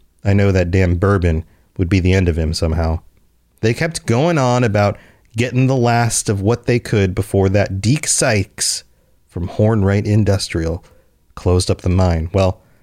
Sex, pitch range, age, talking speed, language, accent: male, 90-115 Hz, 30-49, 170 wpm, English, American